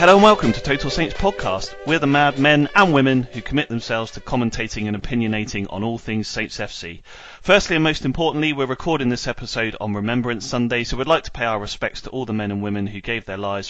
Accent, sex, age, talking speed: British, male, 30-49, 230 wpm